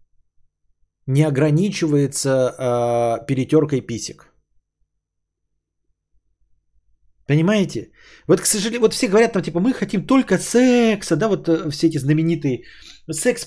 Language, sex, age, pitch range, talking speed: Bulgarian, male, 30-49, 150-205 Hz, 110 wpm